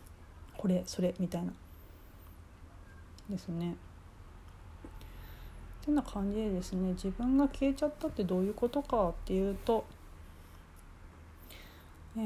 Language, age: Japanese, 40-59